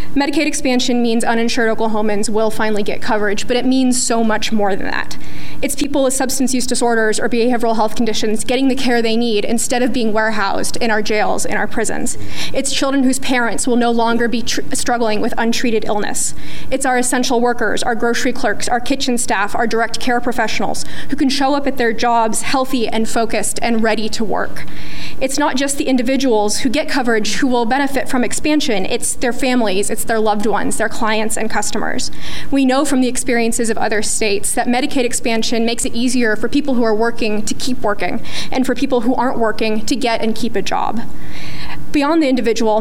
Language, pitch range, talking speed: English, 225-255 Hz, 200 wpm